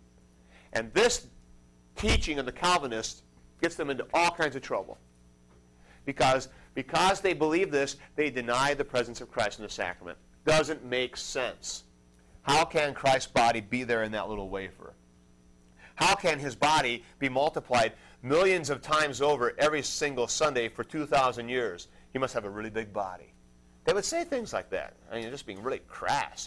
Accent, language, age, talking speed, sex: American, English, 40-59, 170 wpm, male